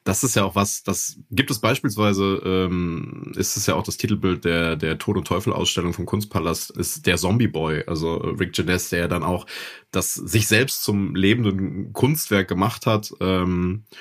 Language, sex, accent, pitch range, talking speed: German, male, German, 90-110 Hz, 165 wpm